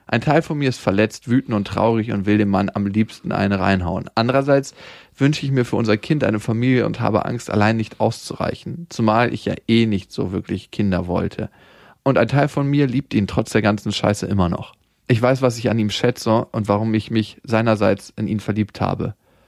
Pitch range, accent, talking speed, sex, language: 105-130 Hz, German, 215 wpm, male, German